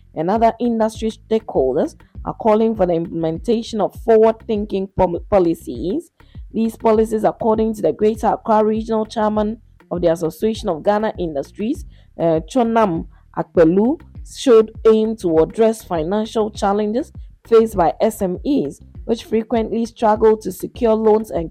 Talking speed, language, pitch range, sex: 130 wpm, English, 180-225 Hz, female